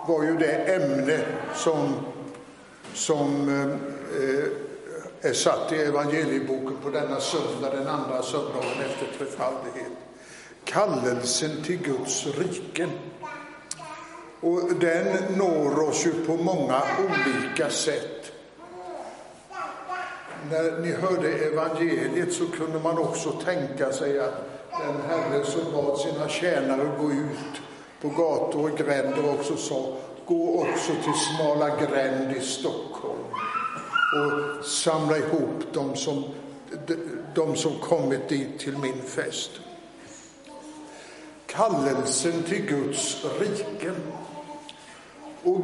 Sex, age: male, 60-79